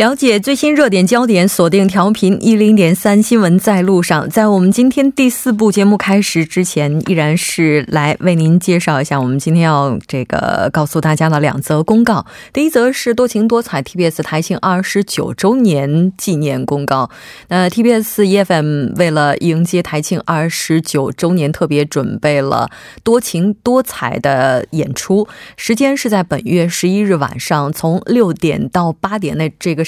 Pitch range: 155-205 Hz